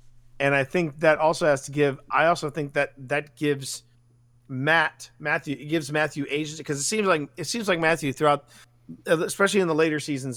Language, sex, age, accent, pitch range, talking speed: English, male, 40-59, American, 120-155 Hz, 195 wpm